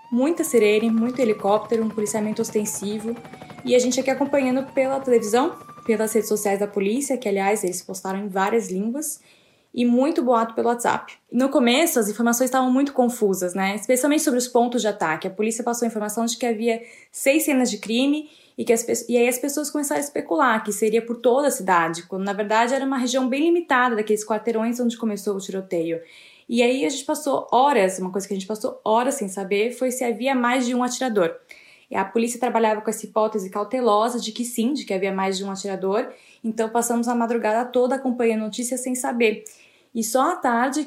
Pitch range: 210-255 Hz